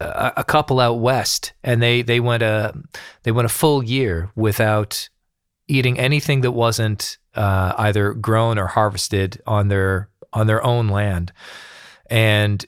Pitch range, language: 100-120 Hz, English